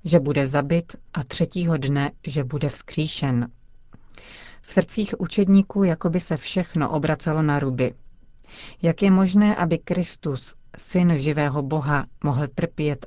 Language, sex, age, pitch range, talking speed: Czech, female, 40-59, 140-170 Hz, 135 wpm